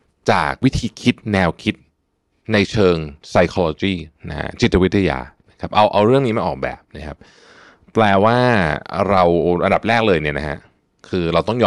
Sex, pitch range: male, 85-110 Hz